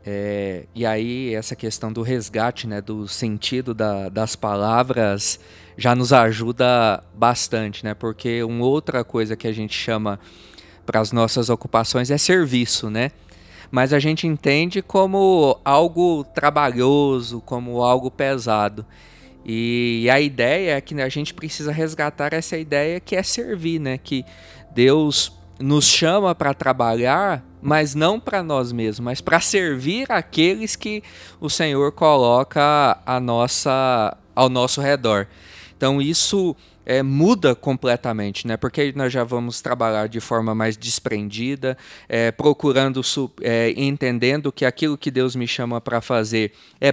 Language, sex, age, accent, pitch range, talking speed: English, male, 20-39, Brazilian, 115-145 Hz, 140 wpm